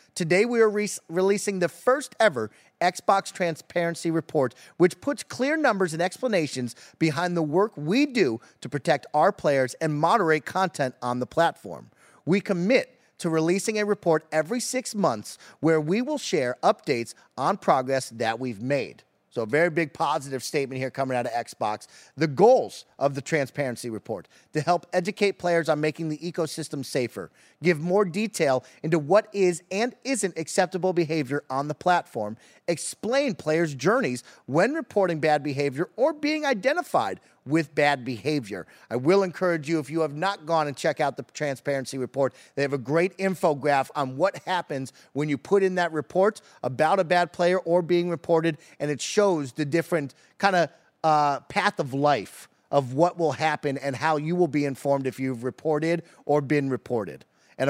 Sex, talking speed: male, 175 wpm